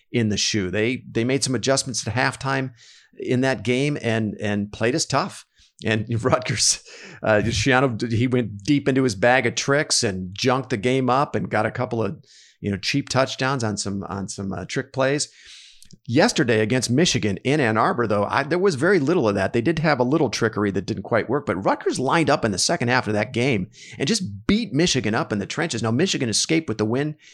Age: 50-69